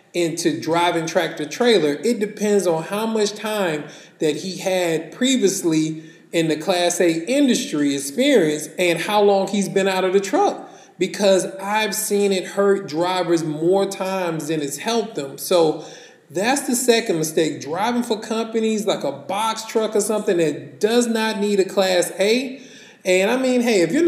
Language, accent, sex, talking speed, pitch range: English, American, male, 170 wpm, 160-205 Hz